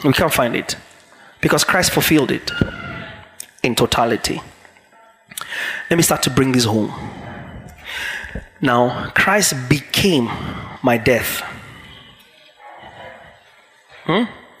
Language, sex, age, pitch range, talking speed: English, male, 30-49, 165-225 Hz, 95 wpm